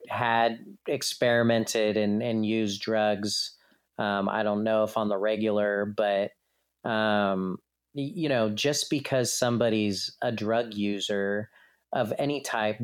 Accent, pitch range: American, 105-125 Hz